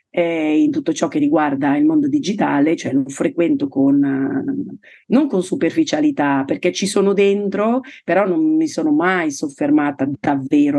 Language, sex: Italian, female